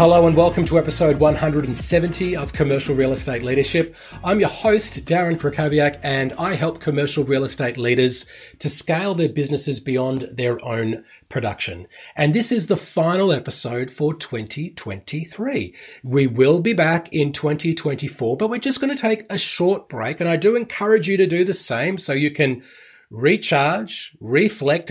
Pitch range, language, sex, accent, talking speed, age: 135-175 Hz, English, male, Australian, 165 wpm, 30-49